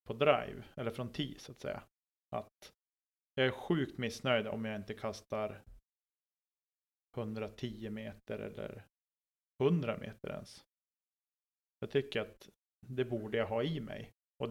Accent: Norwegian